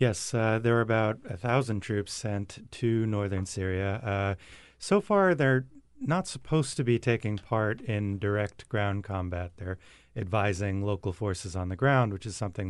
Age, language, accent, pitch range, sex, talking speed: 30-49, English, American, 95-115 Hz, male, 165 wpm